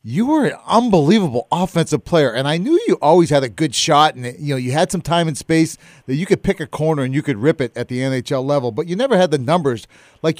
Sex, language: male, English